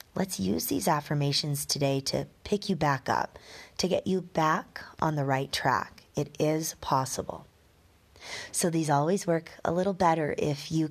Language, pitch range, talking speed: English, 105-170 Hz, 165 wpm